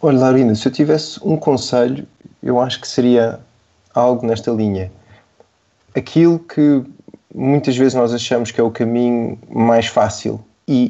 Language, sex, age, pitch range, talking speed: Portuguese, male, 20-39, 115-135 Hz, 150 wpm